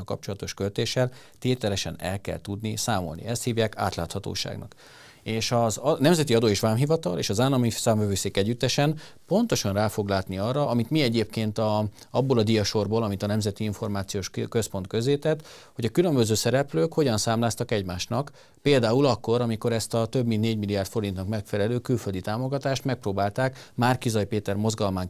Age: 40-59